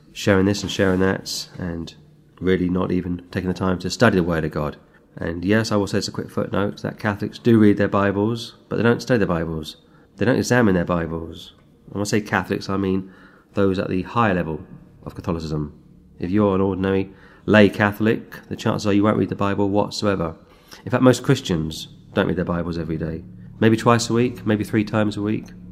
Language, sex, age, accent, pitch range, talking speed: English, male, 30-49, British, 95-115 Hz, 210 wpm